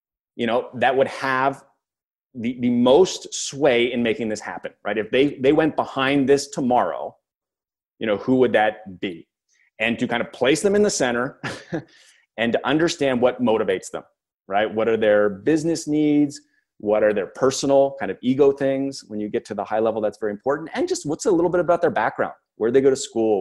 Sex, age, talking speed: male, 30-49, 210 wpm